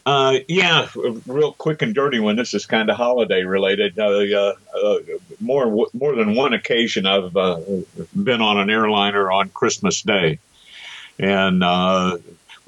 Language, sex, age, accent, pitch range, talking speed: English, male, 50-69, American, 95-125 Hz, 155 wpm